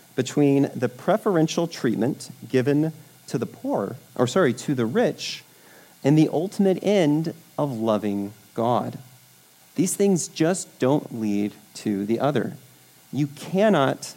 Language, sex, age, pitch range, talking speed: English, male, 30-49, 125-175 Hz, 125 wpm